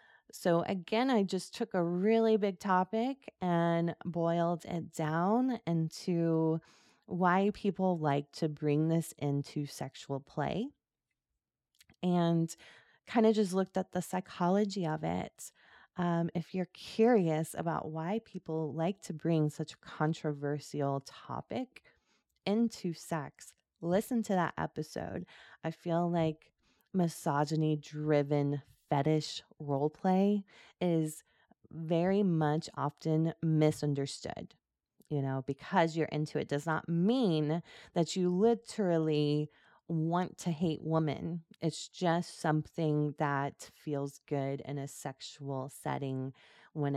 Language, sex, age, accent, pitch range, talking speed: English, female, 20-39, American, 150-190 Hz, 120 wpm